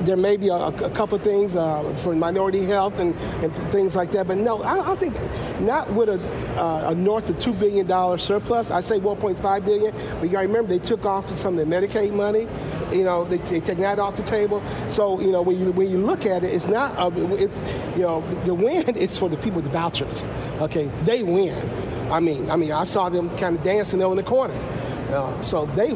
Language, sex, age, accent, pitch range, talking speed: English, male, 50-69, American, 165-205 Hz, 235 wpm